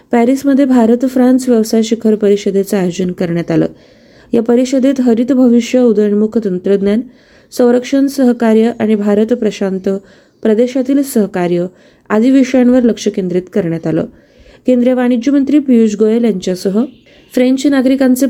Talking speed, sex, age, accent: 120 wpm, female, 20-39, native